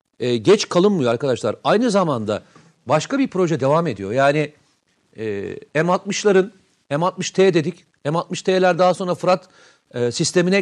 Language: Turkish